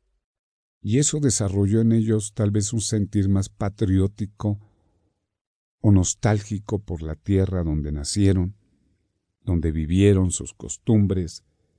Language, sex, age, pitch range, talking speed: Spanish, male, 50-69, 85-110 Hz, 110 wpm